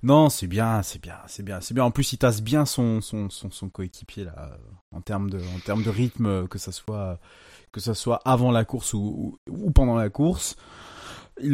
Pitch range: 95-125 Hz